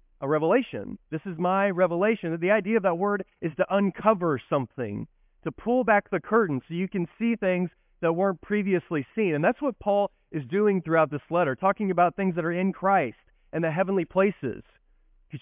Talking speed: 195 wpm